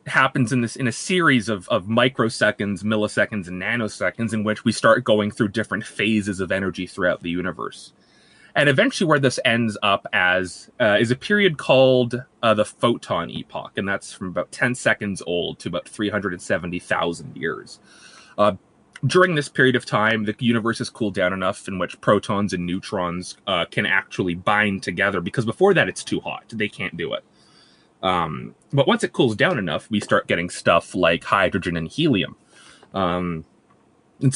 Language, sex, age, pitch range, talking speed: English, male, 30-49, 105-140 Hz, 185 wpm